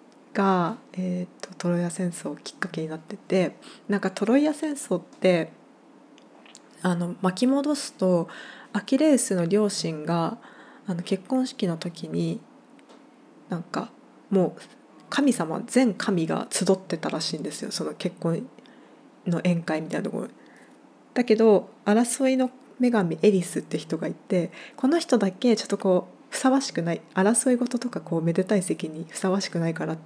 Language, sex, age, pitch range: Japanese, female, 20-39, 180-260 Hz